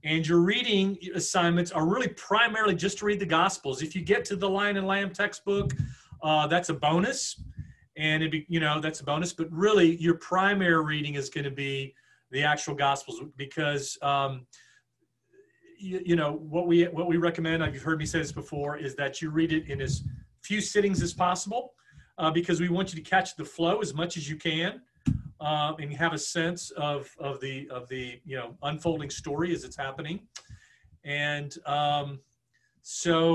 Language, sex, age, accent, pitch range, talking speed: English, male, 40-59, American, 145-180 Hz, 195 wpm